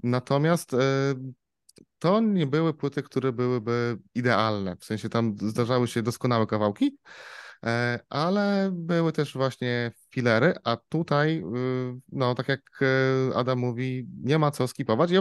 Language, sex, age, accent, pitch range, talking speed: Polish, male, 20-39, native, 110-130 Hz, 125 wpm